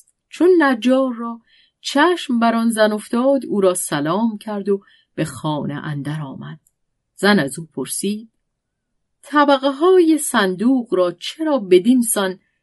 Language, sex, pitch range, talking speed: Persian, female, 155-260 Hz, 135 wpm